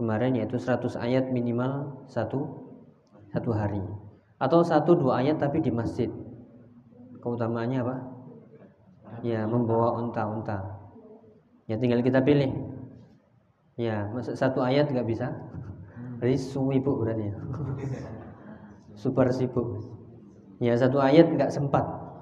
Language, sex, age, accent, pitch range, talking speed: Indonesian, male, 20-39, native, 110-130 Hz, 110 wpm